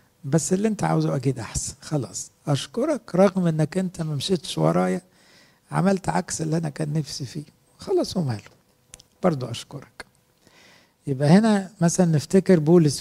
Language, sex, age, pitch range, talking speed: English, male, 60-79, 145-175 Hz, 135 wpm